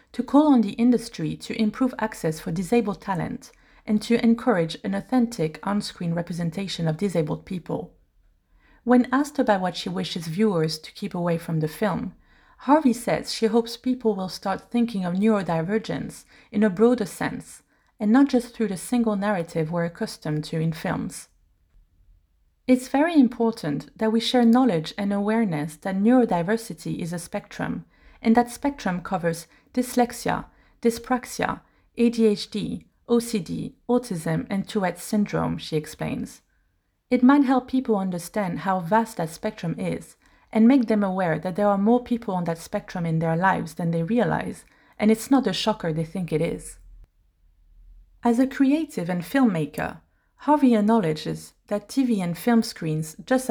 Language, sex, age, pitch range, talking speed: English, female, 30-49, 170-235 Hz, 155 wpm